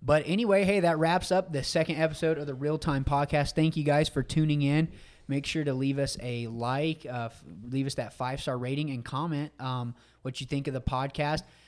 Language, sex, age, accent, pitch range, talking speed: English, male, 20-39, American, 135-160 Hz, 215 wpm